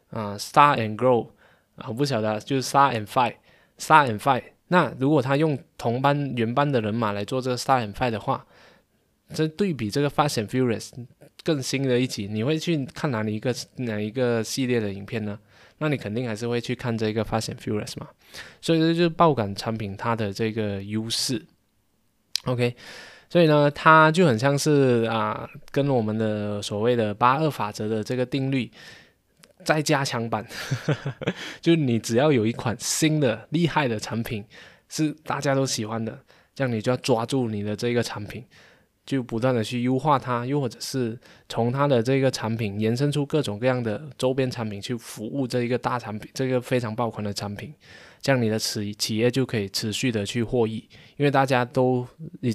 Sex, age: male, 20-39